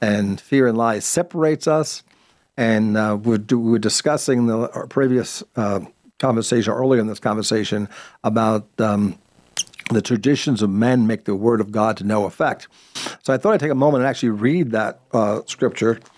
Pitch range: 110-155 Hz